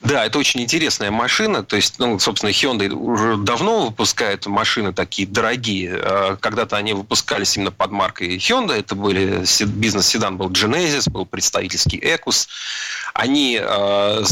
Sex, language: male, Russian